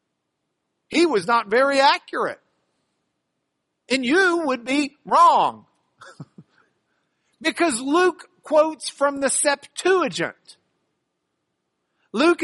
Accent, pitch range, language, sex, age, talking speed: American, 170-280 Hz, English, male, 50-69, 80 wpm